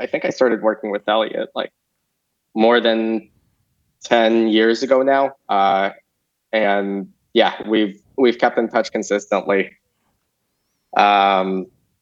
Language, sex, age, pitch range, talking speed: English, male, 20-39, 105-125 Hz, 120 wpm